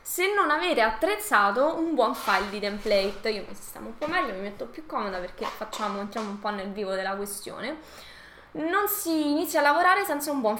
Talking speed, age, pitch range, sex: 205 wpm, 20-39, 205-290 Hz, female